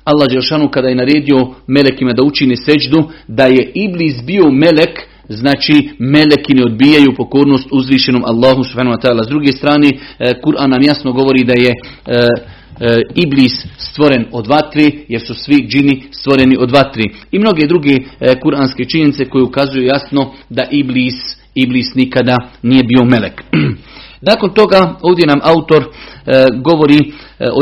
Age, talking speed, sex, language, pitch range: 40-59, 135 wpm, male, Croatian, 130-150 Hz